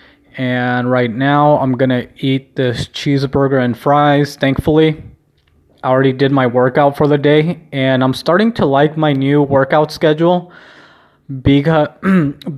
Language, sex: English, male